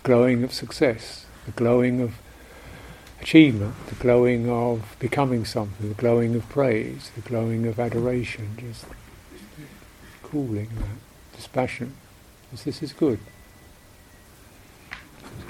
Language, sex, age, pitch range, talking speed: English, male, 60-79, 110-130 Hz, 115 wpm